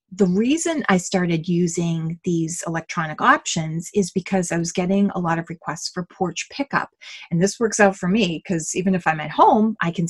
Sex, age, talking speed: female, 30-49, 200 wpm